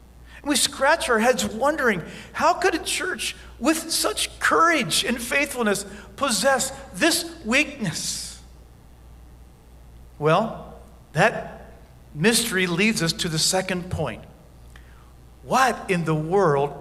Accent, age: American, 50-69